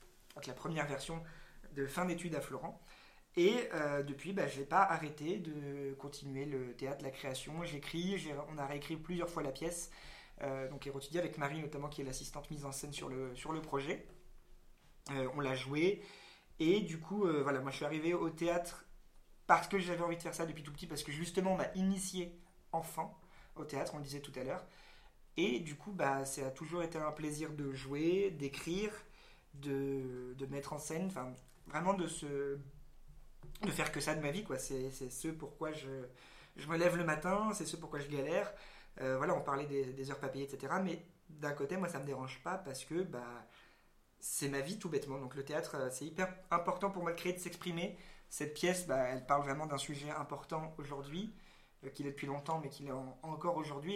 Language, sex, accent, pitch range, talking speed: French, male, French, 140-175 Hz, 215 wpm